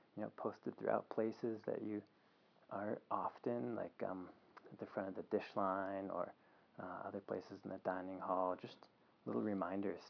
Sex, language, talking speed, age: male, English, 170 wpm, 20-39